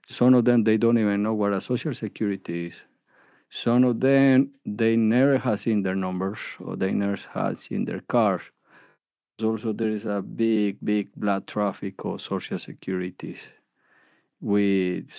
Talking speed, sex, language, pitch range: 160 wpm, male, English, 95-110 Hz